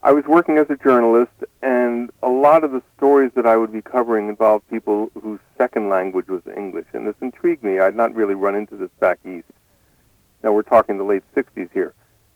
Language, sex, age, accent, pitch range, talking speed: English, male, 60-79, American, 105-135 Hz, 215 wpm